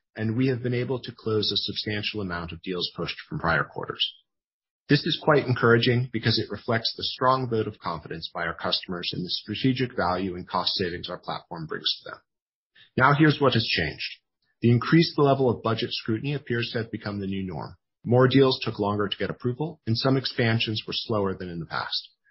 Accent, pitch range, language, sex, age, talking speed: American, 105-130 Hz, English, male, 40-59, 205 wpm